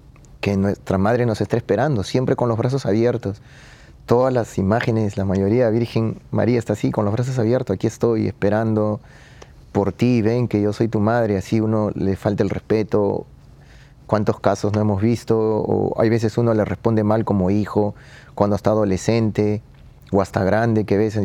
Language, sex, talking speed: Spanish, male, 180 wpm